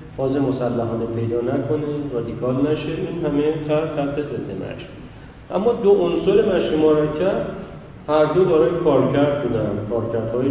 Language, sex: Persian, male